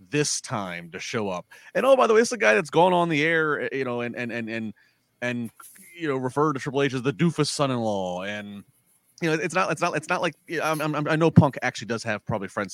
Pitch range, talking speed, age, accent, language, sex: 100-140 Hz, 260 wpm, 30-49, American, English, male